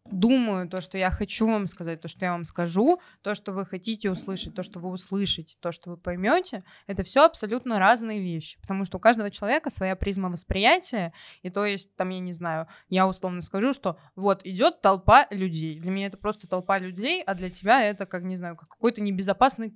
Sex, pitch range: female, 180-215 Hz